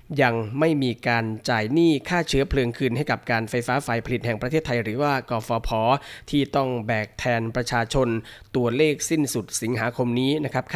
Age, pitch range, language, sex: 20-39, 120-140 Hz, Thai, male